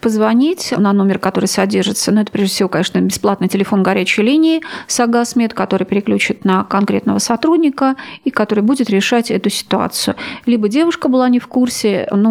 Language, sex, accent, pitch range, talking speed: Russian, female, native, 195-250 Hz, 160 wpm